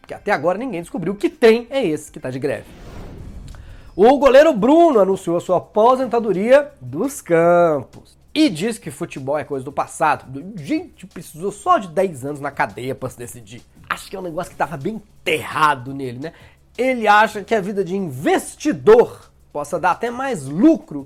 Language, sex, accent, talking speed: Portuguese, male, Brazilian, 180 wpm